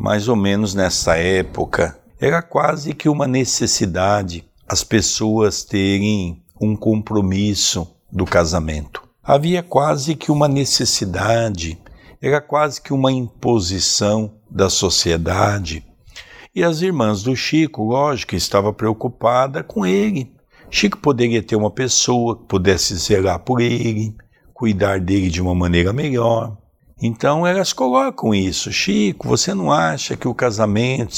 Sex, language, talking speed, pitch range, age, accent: male, Portuguese, 125 wpm, 95-130 Hz, 60-79, Brazilian